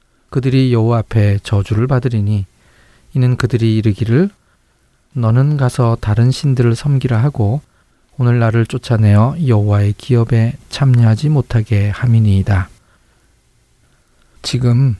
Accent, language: native, Korean